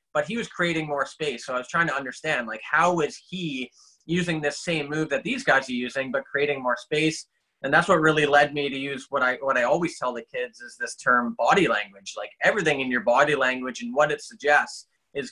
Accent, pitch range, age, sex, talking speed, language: American, 130-155 Hz, 20-39, male, 240 wpm, English